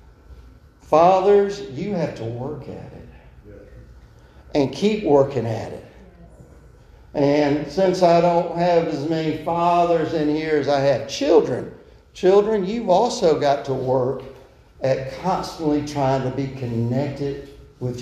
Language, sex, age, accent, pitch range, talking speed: English, male, 50-69, American, 130-190 Hz, 130 wpm